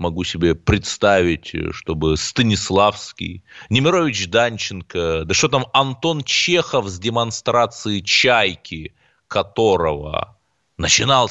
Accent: native